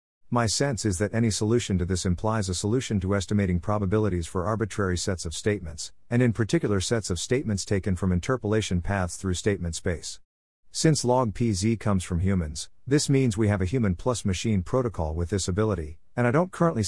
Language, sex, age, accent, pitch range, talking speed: English, male, 50-69, American, 90-115 Hz, 195 wpm